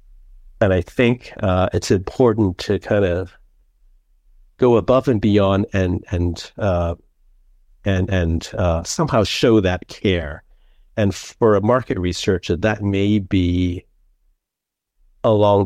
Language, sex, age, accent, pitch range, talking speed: English, male, 50-69, American, 90-110 Hz, 125 wpm